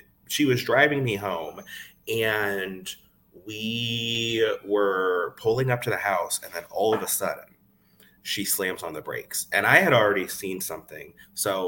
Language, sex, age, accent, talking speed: English, male, 30-49, American, 160 wpm